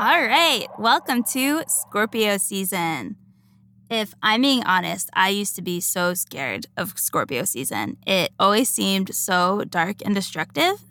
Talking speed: 145 wpm